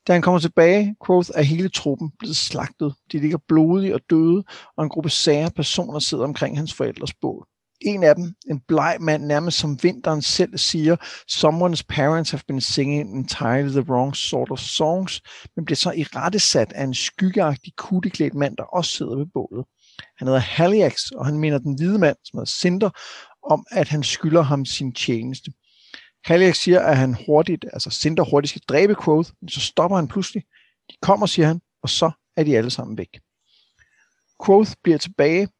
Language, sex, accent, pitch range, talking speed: Danish, male, native, 140-175 Hz, 185 wpm